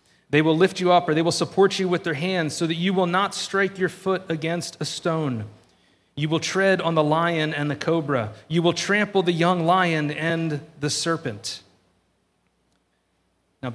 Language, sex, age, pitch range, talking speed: English, male, 40-59, 130-170 Hz, 190 wpm